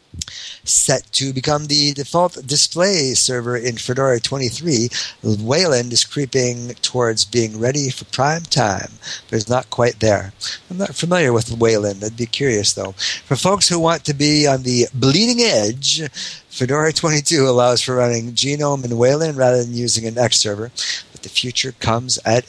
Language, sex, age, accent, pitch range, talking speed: English, male, 50-69, American, 115-145 Hz, 165 wpm